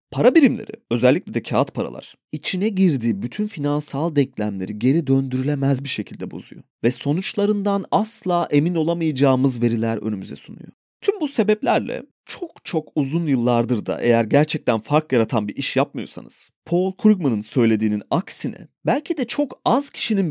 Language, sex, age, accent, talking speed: Turkish, male, 30-49, native, 140 wpm